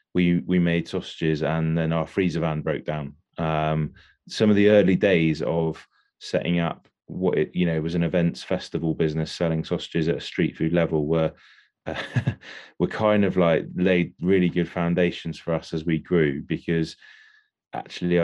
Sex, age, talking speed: male, 20-39, 180 wpm